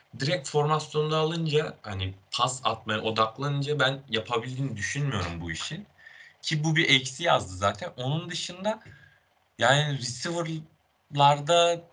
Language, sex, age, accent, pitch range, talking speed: Turkish, male, 30-49, native, 100-140 Hz, 110 wpm